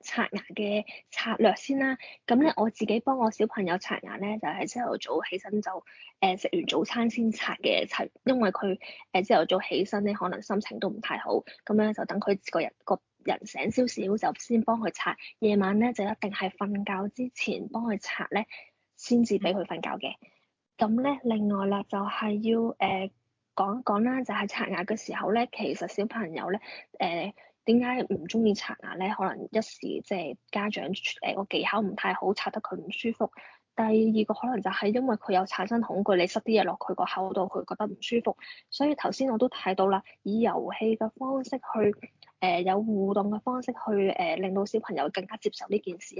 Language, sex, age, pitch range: Chinese, female, 20-39, 195-235 Hz